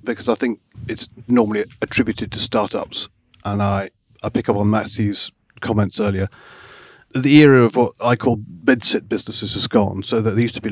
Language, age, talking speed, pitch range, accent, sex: English, 40-59, 180 wpm, 100-120 Hz, British, male